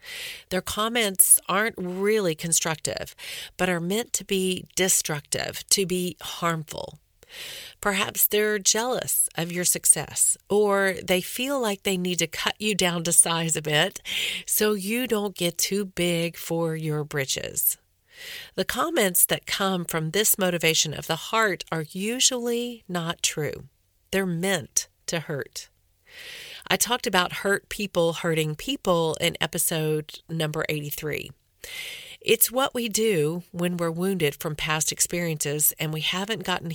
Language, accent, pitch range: English, American, 160-210 Hz